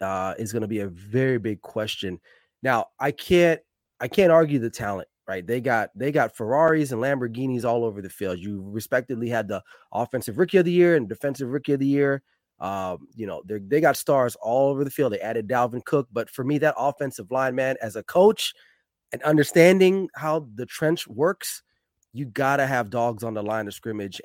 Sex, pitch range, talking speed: male, 100-140 Hz, 210 wpm